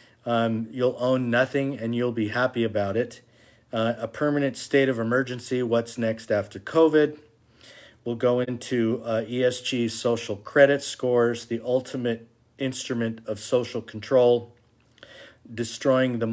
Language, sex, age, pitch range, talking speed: English, male, 40-59, 115-125 Hz, 130 wpm